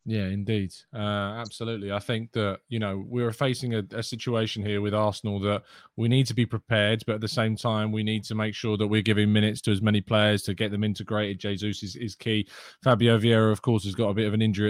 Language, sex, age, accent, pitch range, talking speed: English, male, 20-39, British, 105-130 Hz, 245 wpm